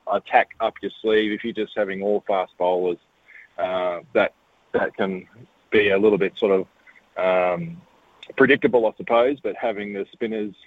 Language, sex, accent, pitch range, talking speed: English, male, Australian, 105-115 Hz, 165 wpm